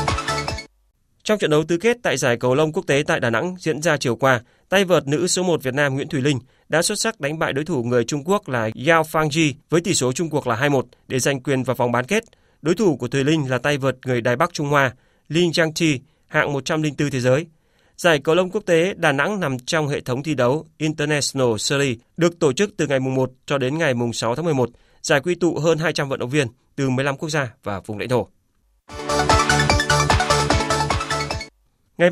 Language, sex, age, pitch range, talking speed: Vietnamese, male, 20-39, 130-170 Hz, 220 wpm